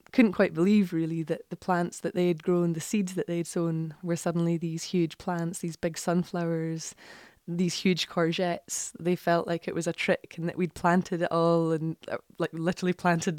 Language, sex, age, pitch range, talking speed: English, female, 20-39, 165-180 Hz, 205 wpm